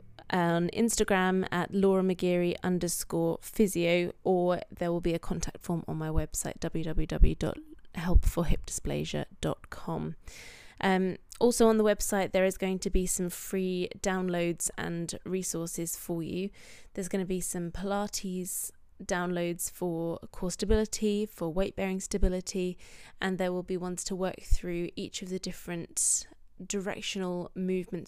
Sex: female